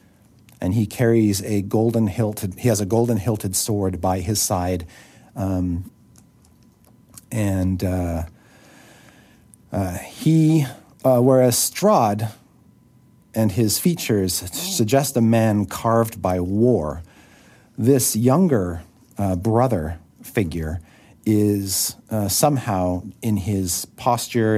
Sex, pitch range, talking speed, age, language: male, 90-115 Hz, 105 wpm, 50-69, English